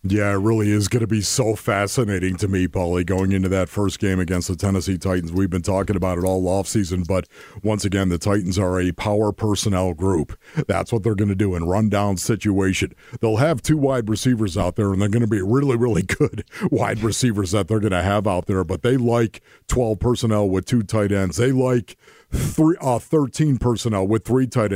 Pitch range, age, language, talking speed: 100-130 Hz, 50-69, English, 215 wpm